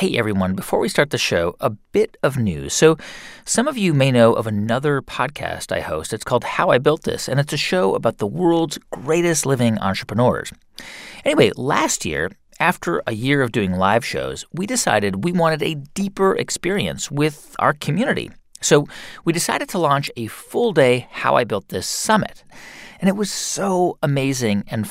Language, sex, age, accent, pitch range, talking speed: English, male, 40-59, American, 120-180 Hz, 185 wpm